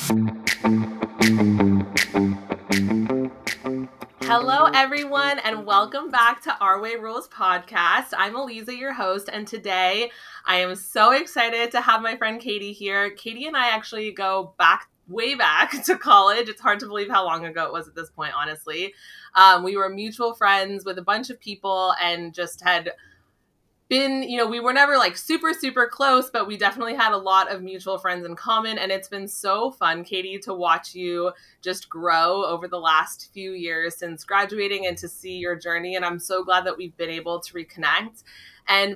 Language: English